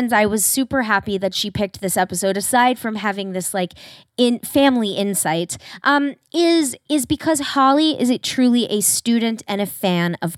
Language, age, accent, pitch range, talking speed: English, 20-39, American, 195-260 Hz, 180 wpm